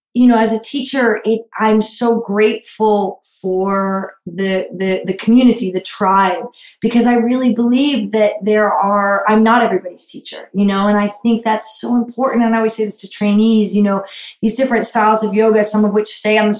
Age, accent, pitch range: 20-39, American, 205-240 Hz